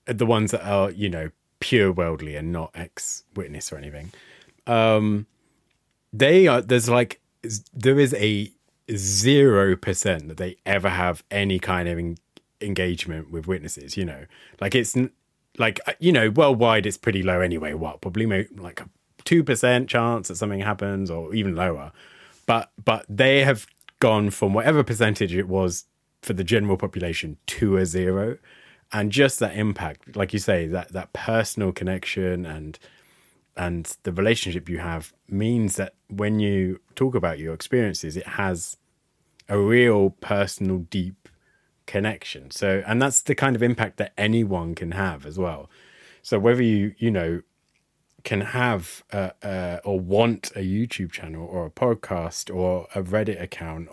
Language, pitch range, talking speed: English, 90-115 Hz, 160 wpm